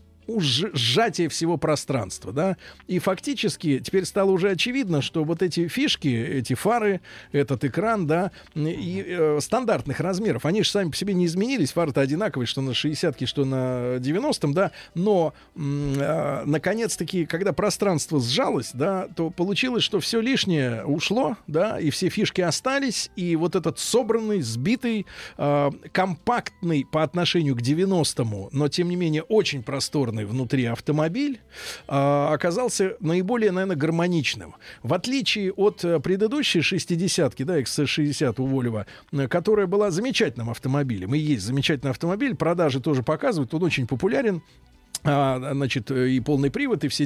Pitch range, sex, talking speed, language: 140-195 Hz, male, 145 wpm, Russian